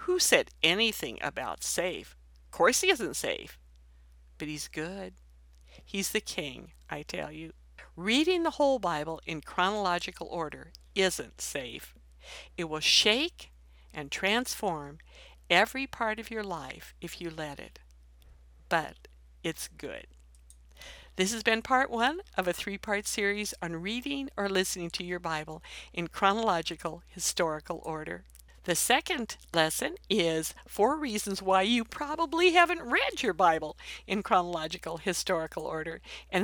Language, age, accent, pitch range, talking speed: English, 60-79, American, 150-225 Hz, 135 wpm